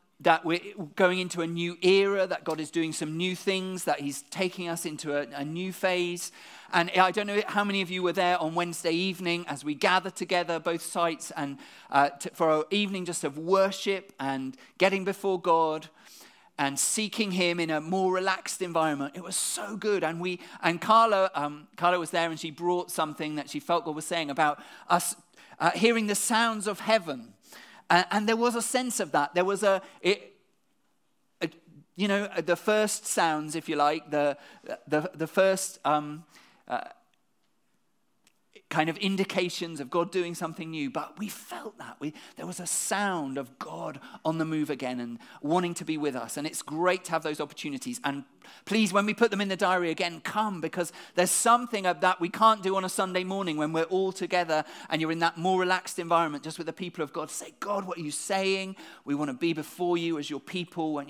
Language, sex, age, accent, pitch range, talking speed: English, male, 40-59, British, 155-190 Hz, 205 wpm